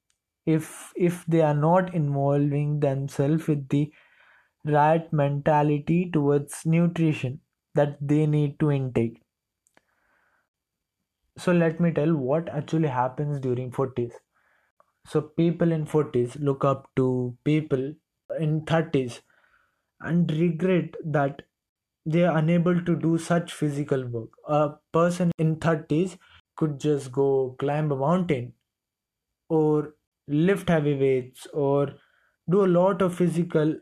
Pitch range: 145-170 Hz